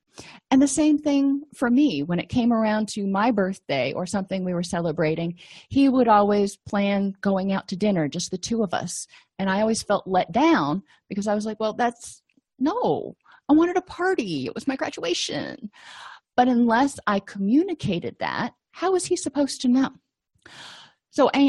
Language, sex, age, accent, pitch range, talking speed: English, female, 30-49, American, 190-255 Hz, 180 wpm